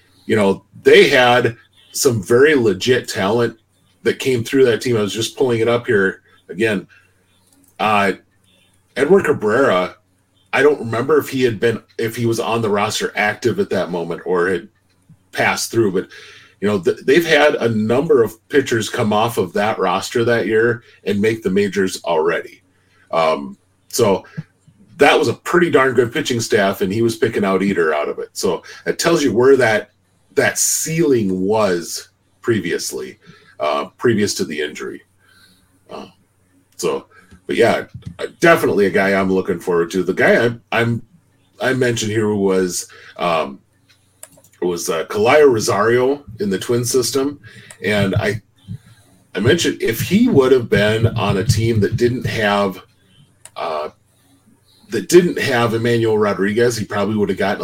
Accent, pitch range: American, 95-120 Hz